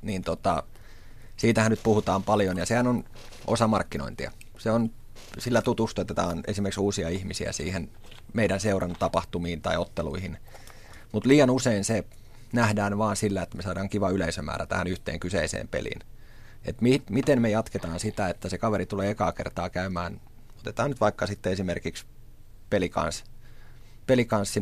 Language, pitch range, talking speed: Finnish, 90-115 Hz, 145 wpm